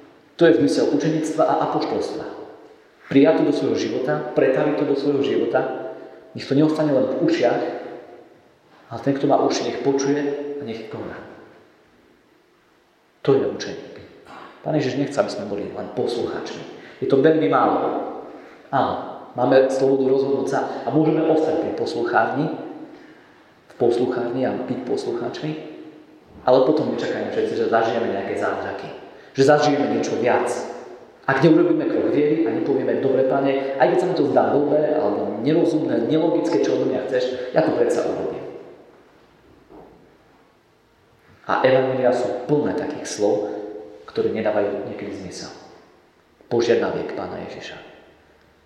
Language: Slovak